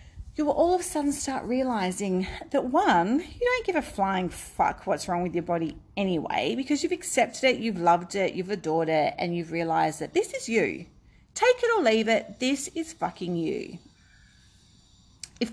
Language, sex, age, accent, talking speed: English, female, 40-59, Australian, 190 wpm